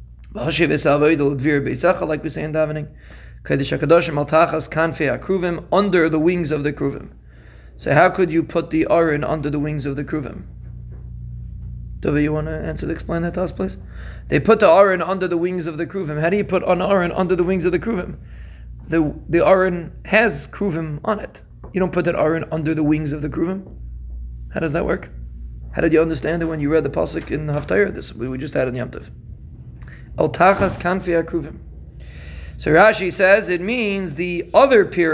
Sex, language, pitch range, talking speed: male, English, 140-175 Hz, 180 wpm